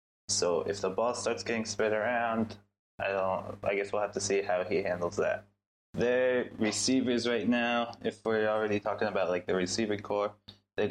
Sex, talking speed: male, 185 wpm